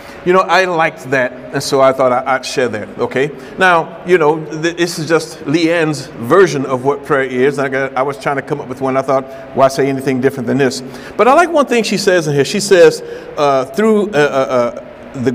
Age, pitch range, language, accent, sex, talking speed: 50-69, 135-180 Hz, English, American, male, 225 wpm